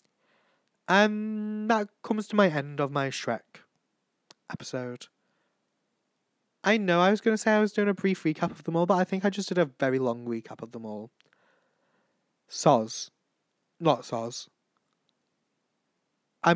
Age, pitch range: 20-39, 130-200 Hz